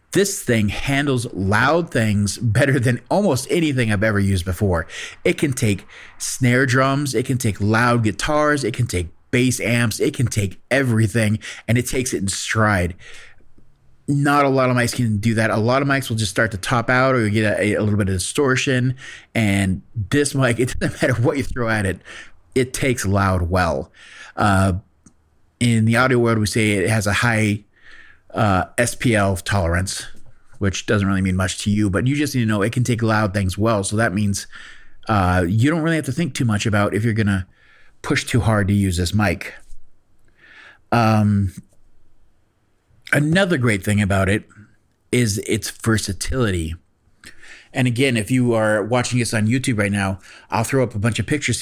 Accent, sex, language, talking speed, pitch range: American, male, English, 190 wpm, 100-125 Hz